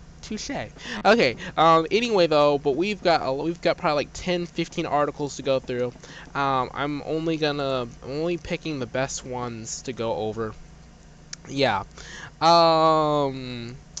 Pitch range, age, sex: 130-165 Hz, 20-39, male